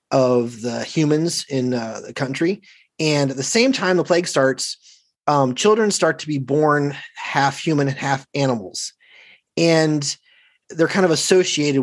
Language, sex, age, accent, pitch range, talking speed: English, male, 30-49, American, 130-160 Hz, 155 wpm